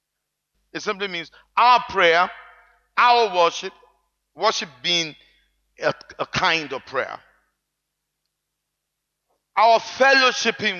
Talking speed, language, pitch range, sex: 90 wpm, English, 130-210 Hz, male